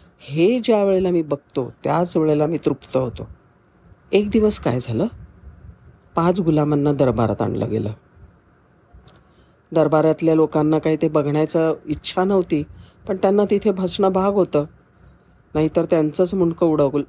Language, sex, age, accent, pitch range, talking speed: Marathi, female, 40-59, native, 130-165 Hz, 125 wpm